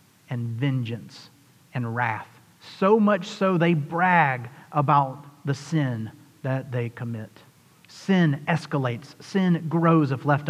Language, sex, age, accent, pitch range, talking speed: English, male, 40-59, American, 140-175 Hz, 120 wpm